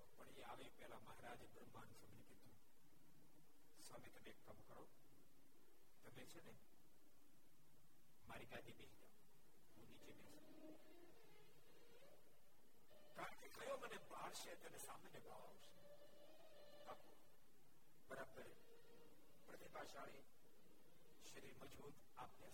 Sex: male